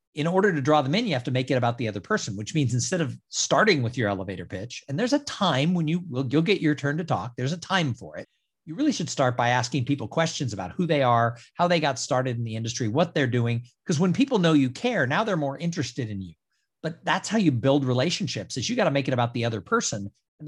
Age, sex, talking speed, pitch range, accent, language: 50-69, male, 275 wpm, 125-175 Hz, American, English